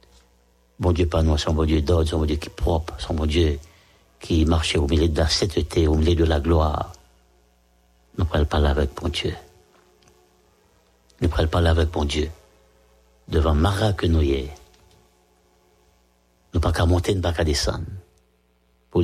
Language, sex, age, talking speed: English, male, 60-79, 165 wpm